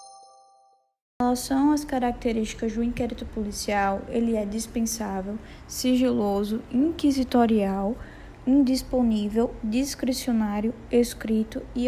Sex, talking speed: female, 80 wpm